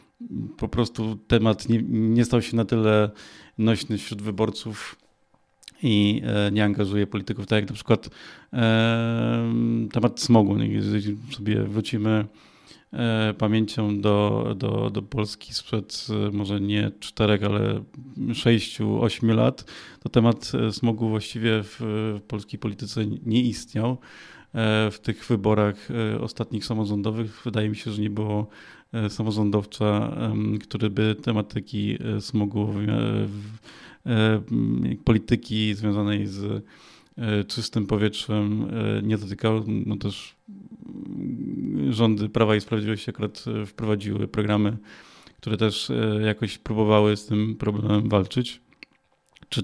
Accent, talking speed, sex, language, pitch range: native, 110 wpm, male, Polish, 105-115 Hz